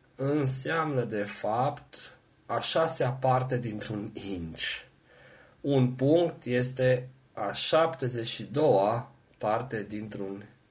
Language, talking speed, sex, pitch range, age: Romanian, 90 wpm, male, 105-130 Hz, 40-59